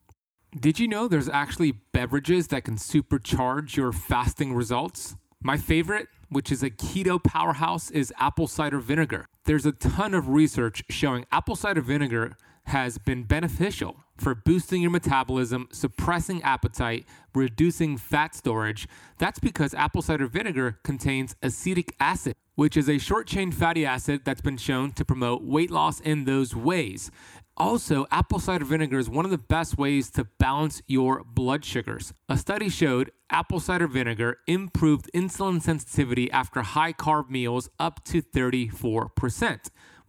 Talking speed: 150 wpm